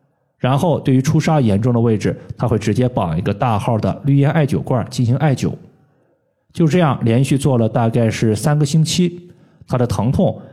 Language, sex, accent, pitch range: Chinese, male, native, 115-155 Hz